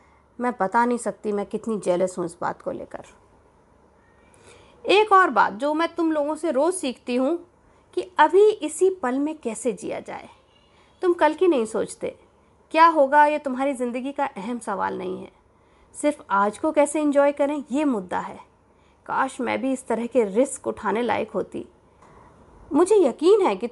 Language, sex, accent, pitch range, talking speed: Hindi, female, native, 230-330 Hz, 175 wpm